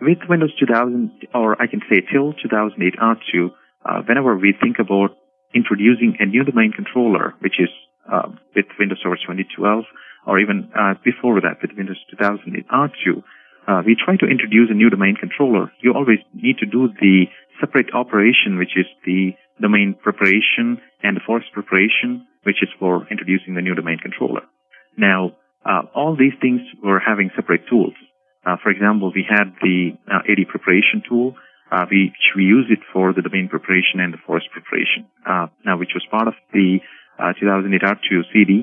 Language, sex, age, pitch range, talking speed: English, male, 40-59, 95-120 Hz, 170 wpm